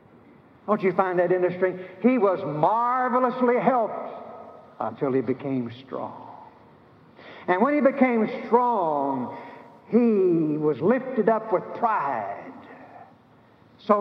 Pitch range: 150-225 Hz